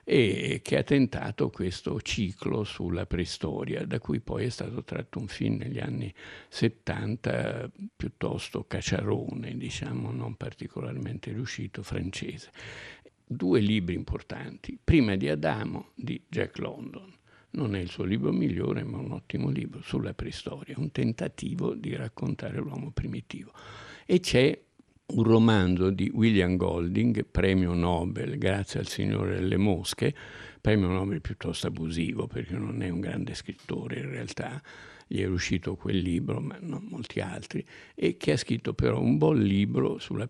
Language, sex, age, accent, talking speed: Italian, male, 60-79, native, 145 wpm